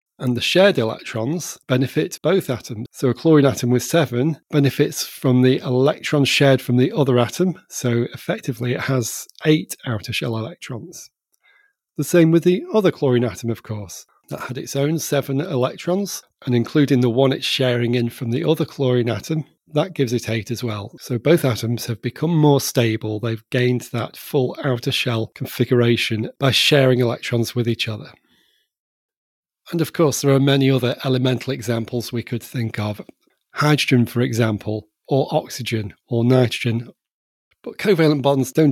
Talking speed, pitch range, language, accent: 165 wpm, 120-145 Hz, English, British